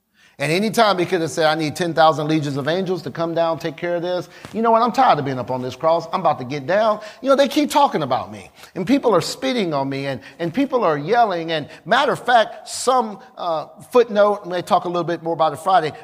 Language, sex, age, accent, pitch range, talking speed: English, male, 40-59, American, 155-215 Hz, 265 wpm